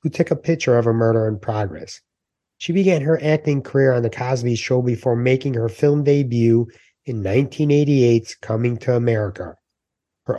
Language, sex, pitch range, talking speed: English, male, 115-140 Hz, 170 wpm